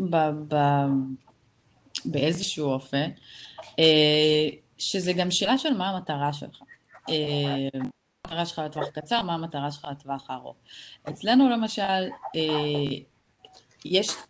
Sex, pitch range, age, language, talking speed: female, 145-185 Hz, 30-49, Hebrew, 90 wpm